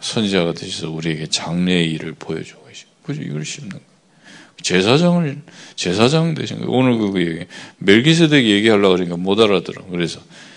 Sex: male